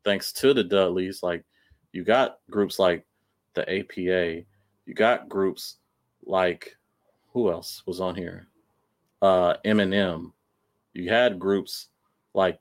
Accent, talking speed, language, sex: American, 125 wpm, English, male